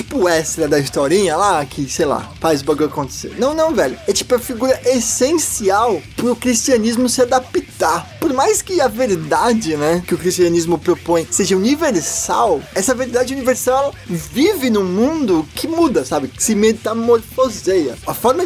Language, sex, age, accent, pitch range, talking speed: Portuguese, male, 20-39, Brazilian, 180-265 Hz, 165 wpm